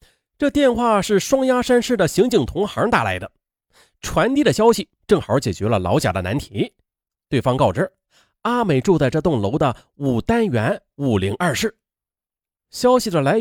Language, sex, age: Chinese, male, 30-49